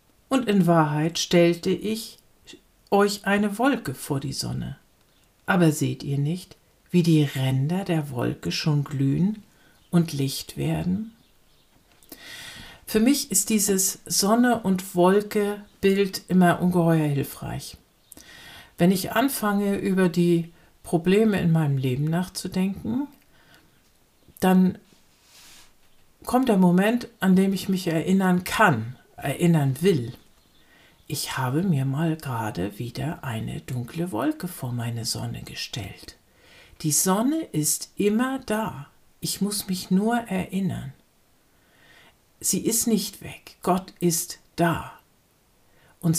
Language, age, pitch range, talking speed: German, 60-79, 150-200 Hz, 110 wpm